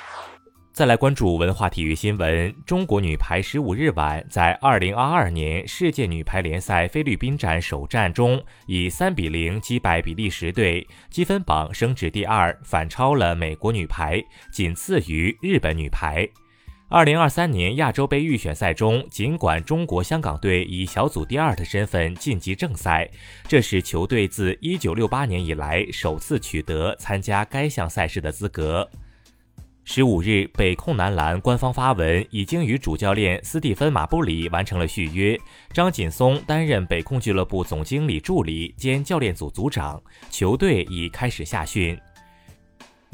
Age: 20-39